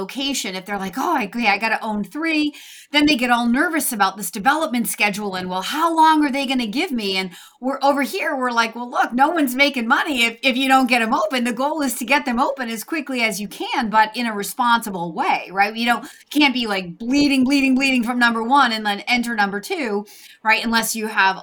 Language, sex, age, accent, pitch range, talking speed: English, female, 30-49, American, 210-285 Hz, 240 wpm